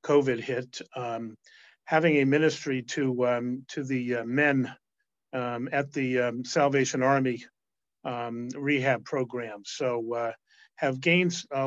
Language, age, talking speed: English, 50-69, 135 wpm